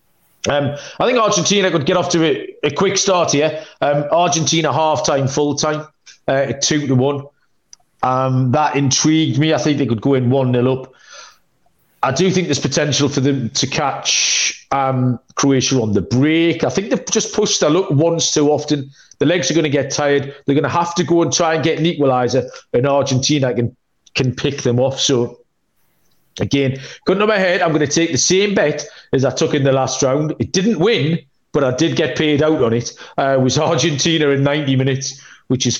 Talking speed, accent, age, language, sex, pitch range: 205 wpm, British, 40-59, English, male, 135-165 Hz